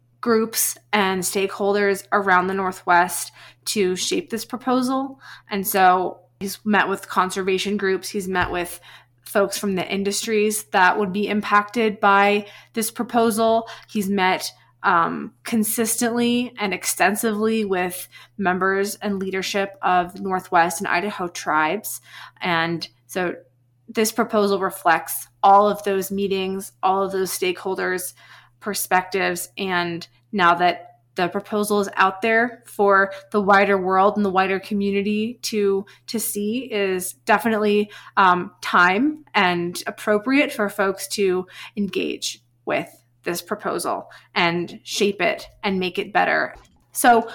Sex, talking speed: female, 125 wpm